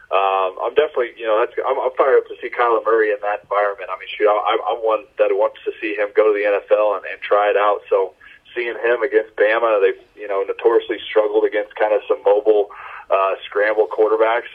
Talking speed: 225 wpm